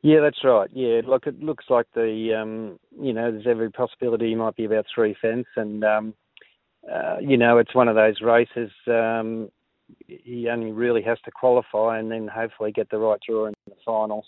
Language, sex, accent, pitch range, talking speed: English, male, Australian, 110-120 Hz, 200 wpm